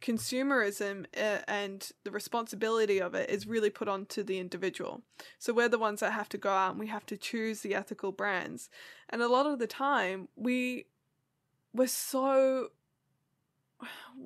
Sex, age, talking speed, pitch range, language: female, 20-39, 150 wpm, 205-255 Hz, English